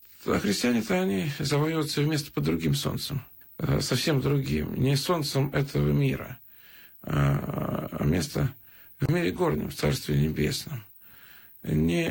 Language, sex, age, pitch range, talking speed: Russian, male, 40-59, 100-165 Hz, 115 wpm